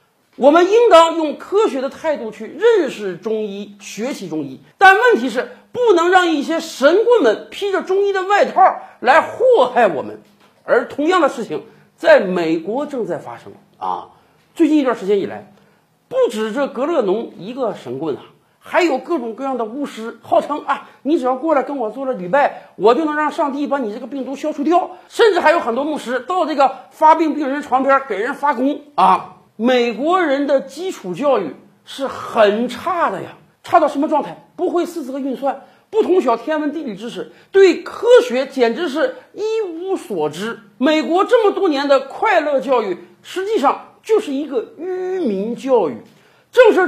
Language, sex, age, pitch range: Chinese, male, 50-69, 250-355 Hz